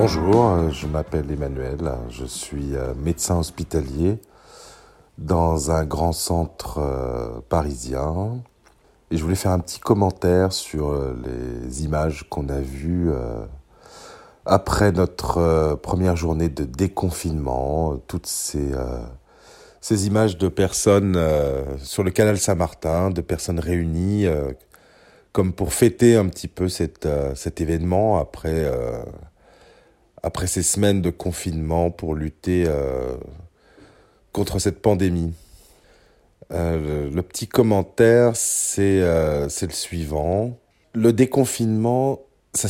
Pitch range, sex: 80-100 Hz, male